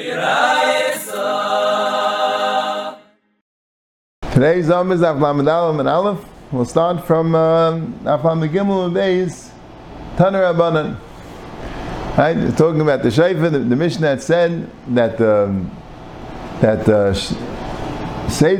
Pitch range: 130-180 Hz